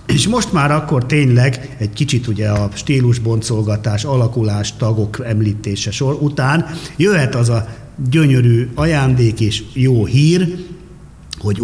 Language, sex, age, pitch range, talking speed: Hungarian, male, 50-69, 110-135 Hz, 125 wpm